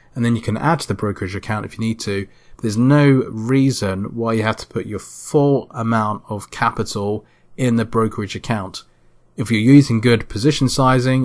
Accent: British